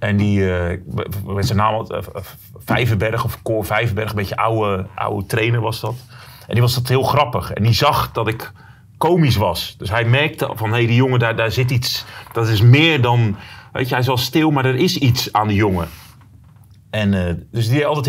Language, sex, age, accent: Dutch, male, 30-49, Dutch